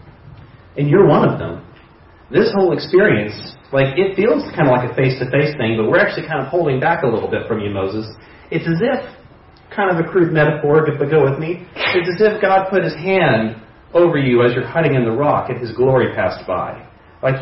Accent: American